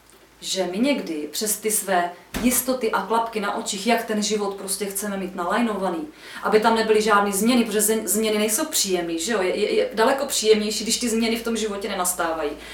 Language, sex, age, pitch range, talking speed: Czech, female, 30-49, 200-255 Hz, 190 wpm